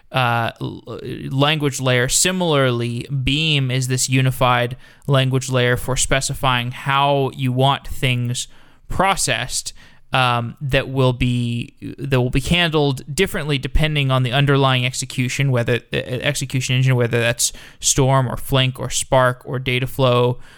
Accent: American